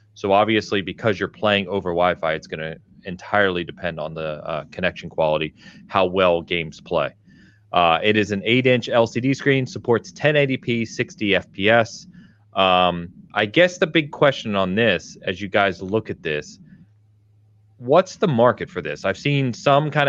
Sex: male